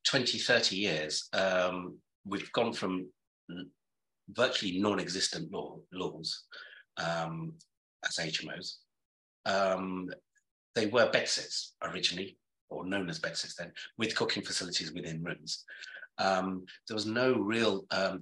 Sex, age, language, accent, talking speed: male, 30-49, English, British, 105 wpm